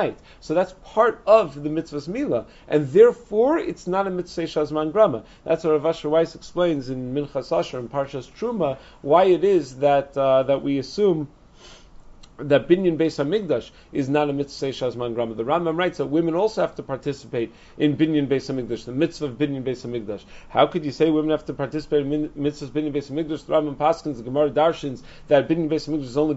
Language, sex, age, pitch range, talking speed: English, male, 40-59, 140-170 Hz, 210 wpm